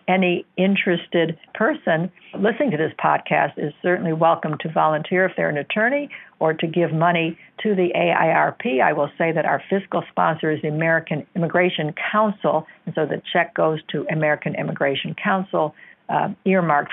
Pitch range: 155-190 Hz